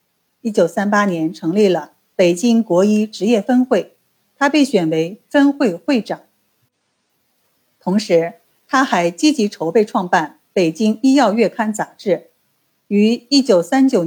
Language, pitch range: Chinese, 175-245 Hz